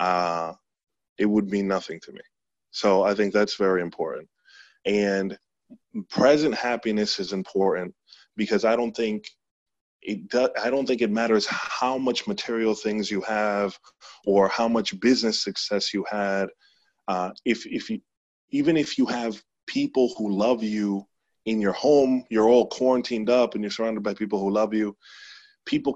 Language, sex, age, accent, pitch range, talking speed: English, male, 20-39, American, 100-120 Hz, 160 wpm